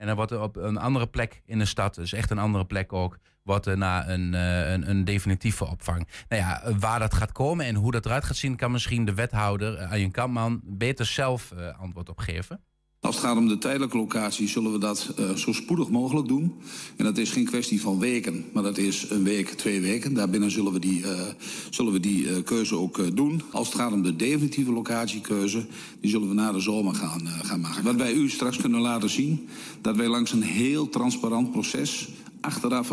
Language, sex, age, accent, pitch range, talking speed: Dutch, male, 50-69, Dutch, 100-120 Hz, 215 wpm